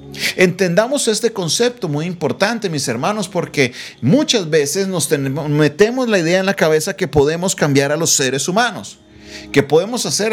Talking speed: 155 wpm